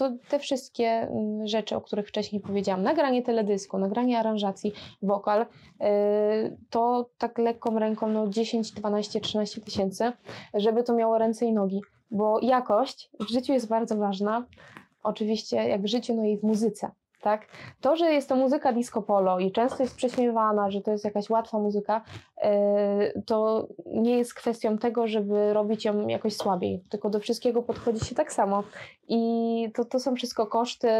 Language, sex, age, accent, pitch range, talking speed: Polish, female, 20-39, native, 205-230 Hz, 165 wpm